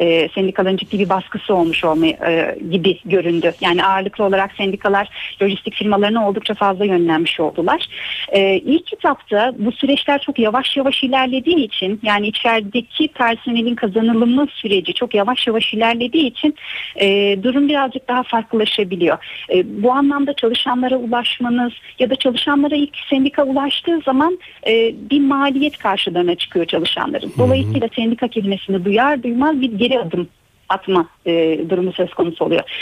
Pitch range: 195-280 Hz